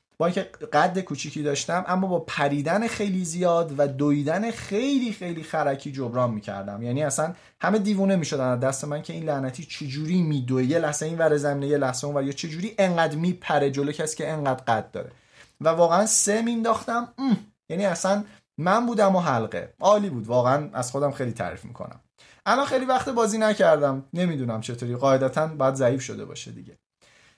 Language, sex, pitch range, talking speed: Persian, male, 135-200 Hz, 170 wpm